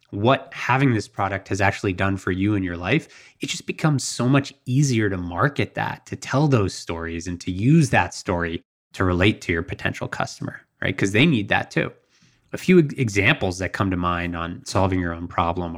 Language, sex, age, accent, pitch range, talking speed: English, male, 20-39, American, 95-125 Hz, 205 wpm